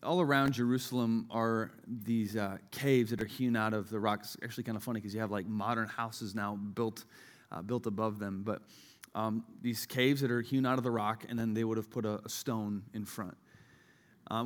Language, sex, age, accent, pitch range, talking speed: English, male, 30-49, American, 110-150 Hz, 225 wpm